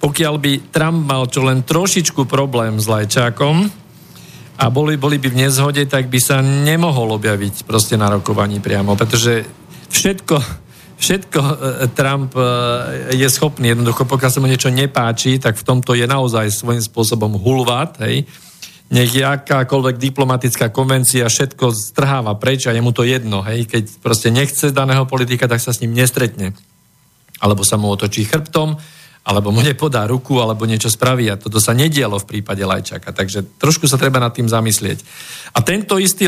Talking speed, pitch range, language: 160 wpm, 115-145 Hz, Slovak